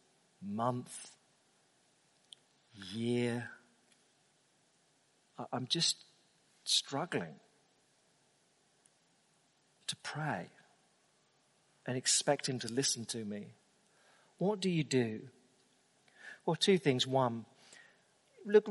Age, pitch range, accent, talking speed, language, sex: 50-69, 135-190 Hz, British, 75 wpm, English, male